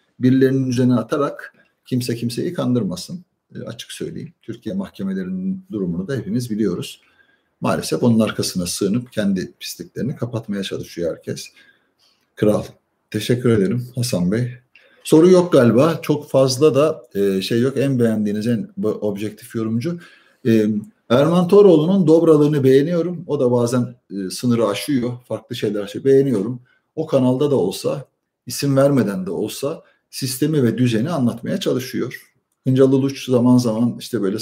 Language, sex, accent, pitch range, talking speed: Turkish, male, native, 115-150 Hz, 135 wpm